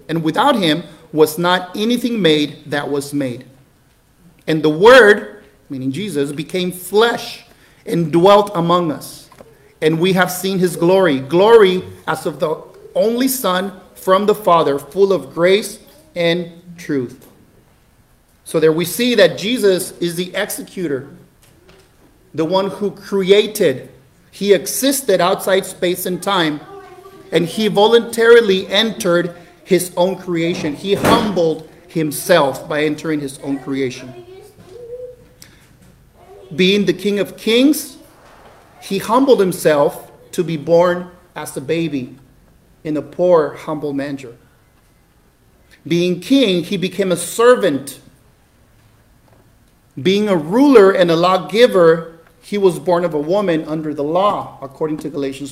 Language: English